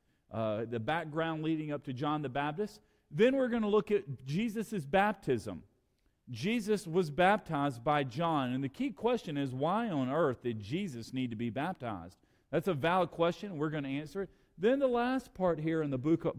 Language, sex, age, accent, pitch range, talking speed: English, male, 40-59, American, 125-175 Hz, 200 wpm